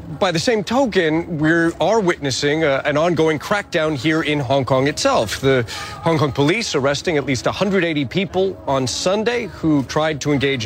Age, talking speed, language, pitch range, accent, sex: 40-59, 175 wpm, English, 145-190 Hz, American, male